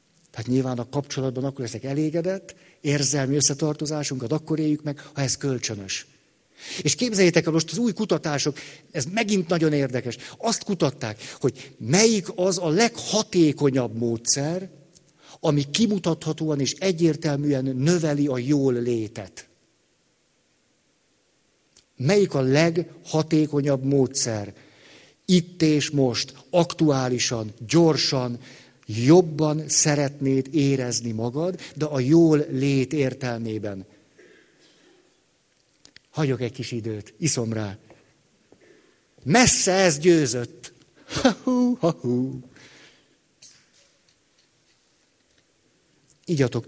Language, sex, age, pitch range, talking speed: Hungarian, male, 50-69, 130-165 Hz, 90 wpm